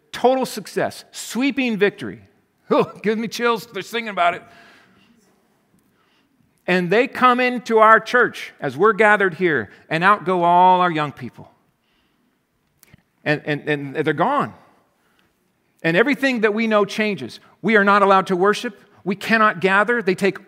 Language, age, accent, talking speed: English, 50-69, American, 150 wpm